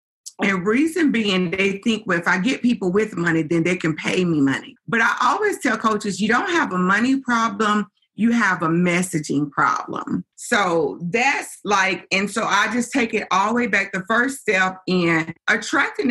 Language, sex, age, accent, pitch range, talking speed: English, female, 40-59, American, 185-245 Hz, 195 wpm